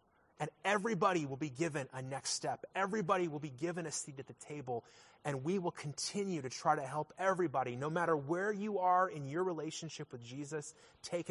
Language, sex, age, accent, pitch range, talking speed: English, male, 30-49, American, 145-185 Hz, 195 wpm